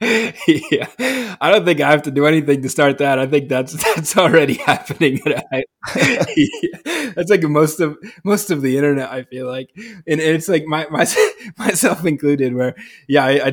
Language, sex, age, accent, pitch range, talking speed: English, male, 20-39, American, 120-145 Hz, 180 wpm